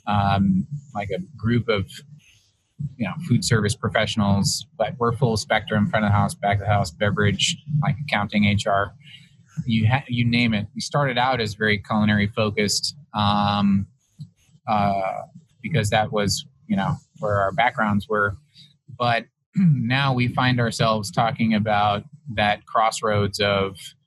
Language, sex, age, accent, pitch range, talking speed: English, male, 20-39, American, 105-130 Hz, 145 wpm